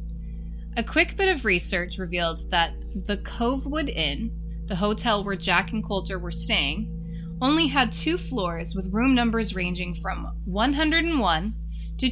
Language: English